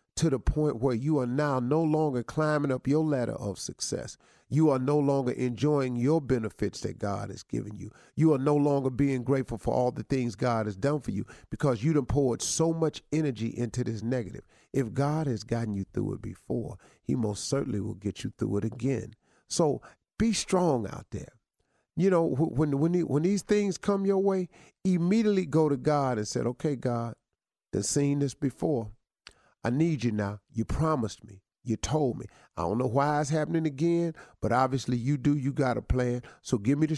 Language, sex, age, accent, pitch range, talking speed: English, male, 40-59, American, 110-145 Hz, 205 wpm